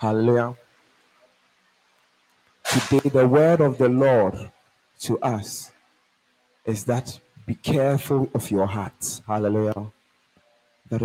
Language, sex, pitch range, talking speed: English, male, 110-140 Hz, 100 wpm